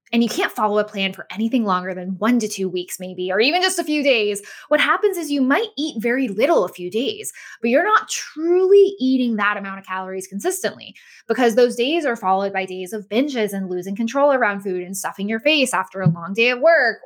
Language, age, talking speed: English, 20-39, 230 wpm